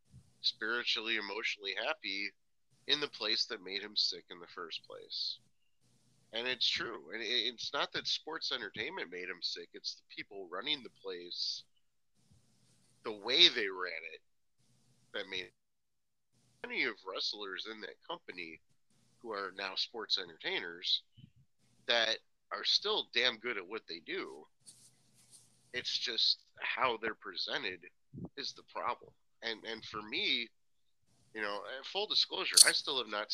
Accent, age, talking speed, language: American, 30-49, 140 wpm, English